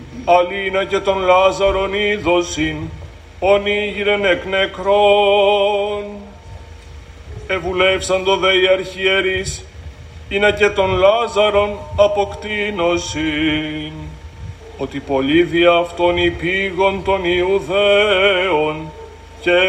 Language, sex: Greek, male